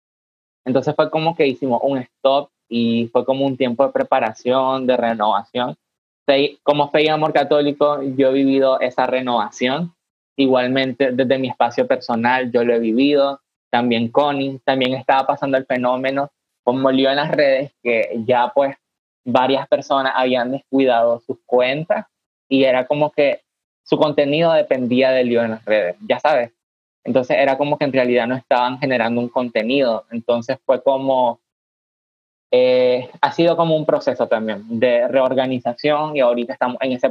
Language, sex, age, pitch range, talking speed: English, male, 20-39, 125-140 Hz, 160 wpm